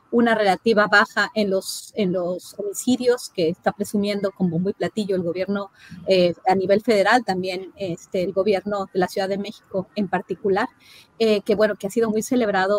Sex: female